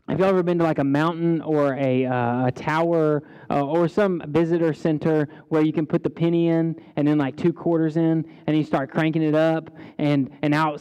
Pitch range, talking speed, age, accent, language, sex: 150-180 Hz, 230 wpm, 20-39, American, English, male